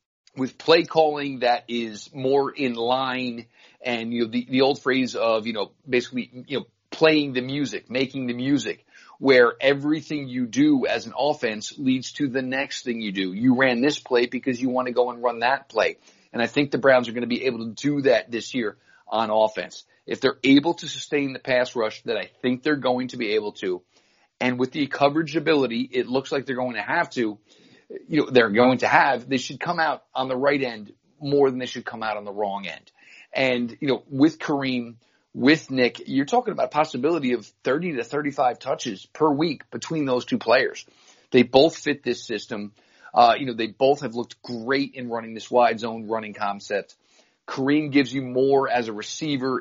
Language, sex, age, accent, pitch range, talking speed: English, male, 40-59, American, 120-140 Hz, 210 wpm